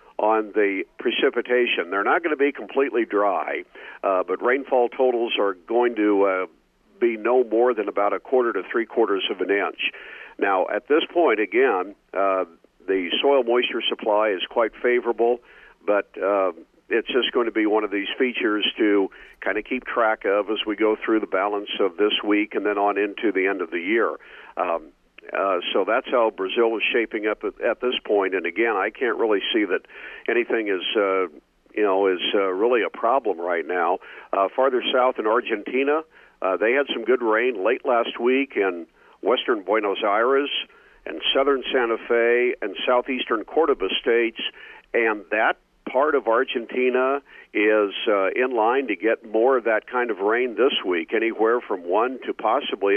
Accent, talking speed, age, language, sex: American, 180 wpm, 50-69, English, male